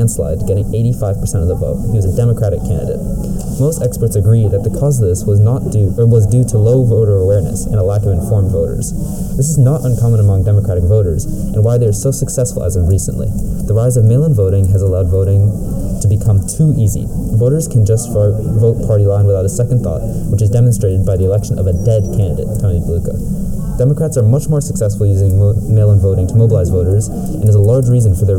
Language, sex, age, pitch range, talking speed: English, male, 20-39, 95-120 Hz, 215 wpm